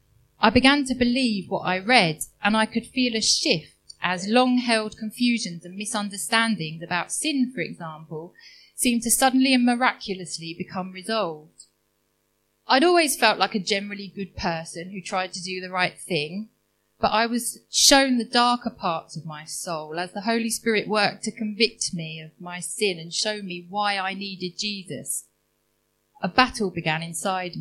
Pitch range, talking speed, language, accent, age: 175-235 Hz, 165 wpm, English, British, 30-49